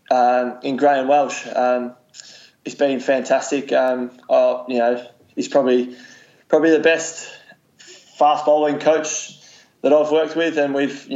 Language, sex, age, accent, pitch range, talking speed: English, male, 20-39, Australian, 125-145 Hz, 145 wpm